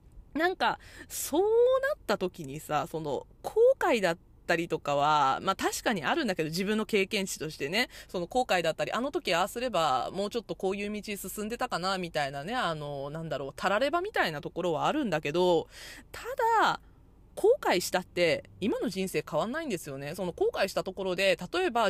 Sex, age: female, 20-39